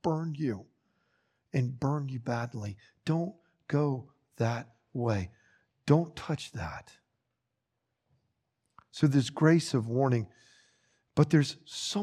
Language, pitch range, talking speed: English, 120-155 Hz, 105 wpm